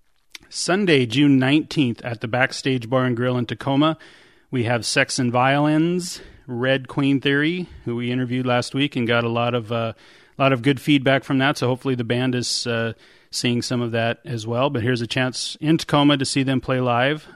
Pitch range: 125-145 Hz